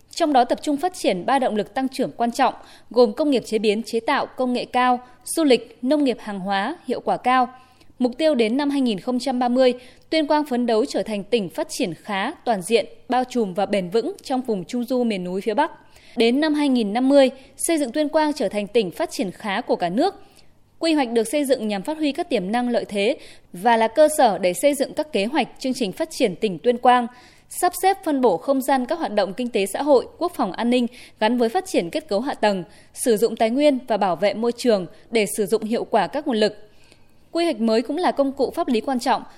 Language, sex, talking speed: Vietnamese, female, 245 wpm